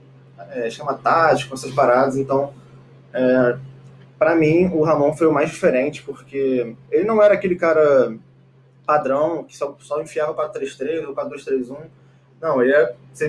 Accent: Brazilian